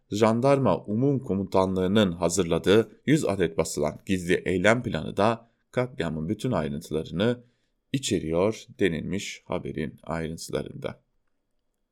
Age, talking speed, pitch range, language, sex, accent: 30-49, 90 wpm, 90-125 Hz, German, male, Turkish